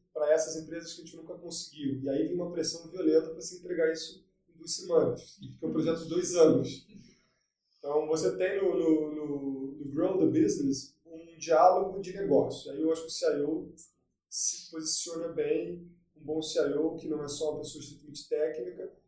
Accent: Brazilian